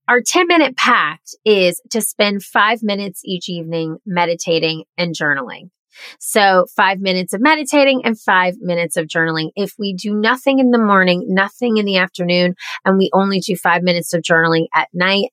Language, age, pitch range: English, 30-49, 170-235 Hz